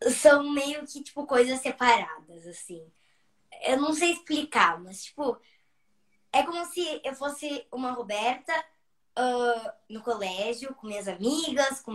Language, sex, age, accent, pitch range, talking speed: Portuguese, male, 10-29, Brazilian, 210-275 Hz, 125 wpm